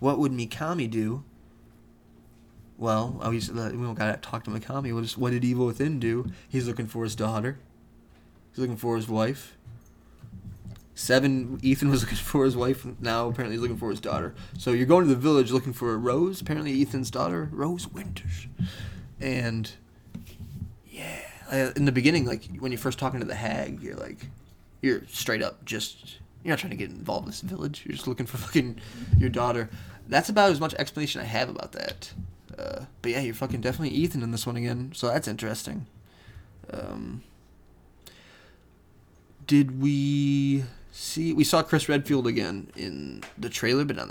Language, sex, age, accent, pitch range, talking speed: English, male, 20-39, American, 105-135 Hz, 170 wpm